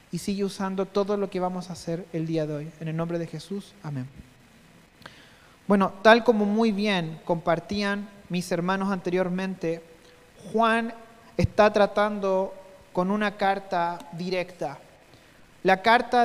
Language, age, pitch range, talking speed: Spanish, 40-59, 190-250 Hz, 135 wpm